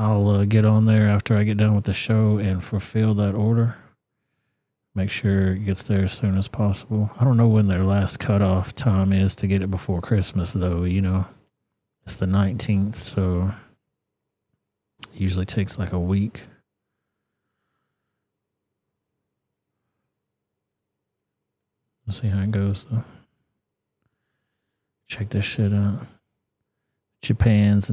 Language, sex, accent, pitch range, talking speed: English, male, American, 100-110 Hz, 140 wpm